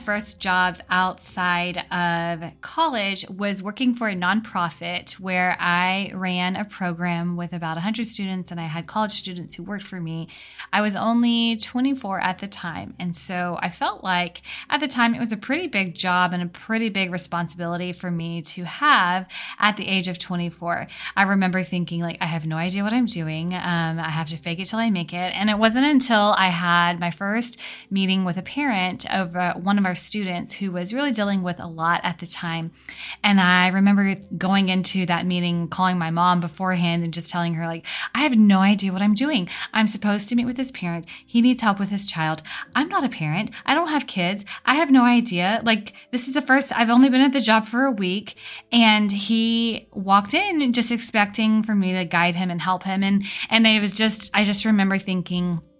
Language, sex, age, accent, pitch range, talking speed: English, female, 20-39, American, 175-220 Hz, 210 wpm